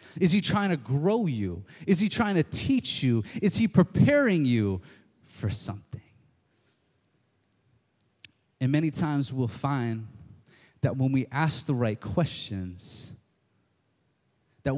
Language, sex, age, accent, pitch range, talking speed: English, male, 30-49, American, 115-150 Hz, 130 wpm